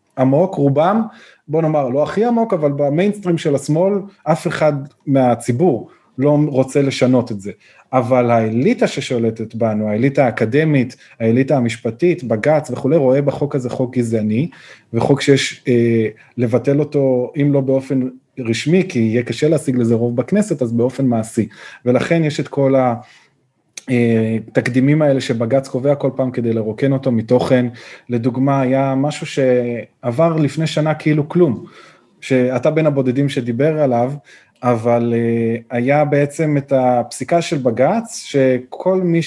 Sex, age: male, 30-49